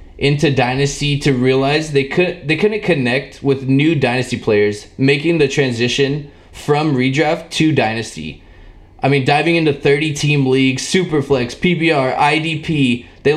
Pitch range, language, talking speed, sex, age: 120-145 Hz, English, 135 wpm, male, 20-39